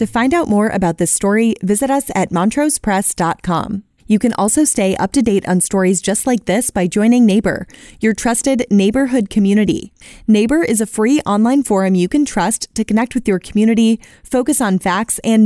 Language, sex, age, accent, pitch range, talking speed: English, female, 20-39, American, 195-245 Hz, 185 wpm